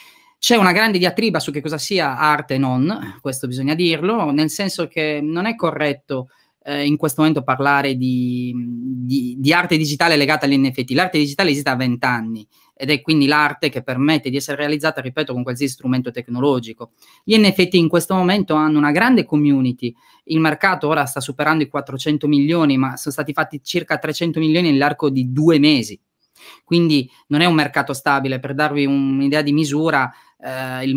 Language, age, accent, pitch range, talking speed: Italian, 30-49, native, 135-175 Hz, 180 wpm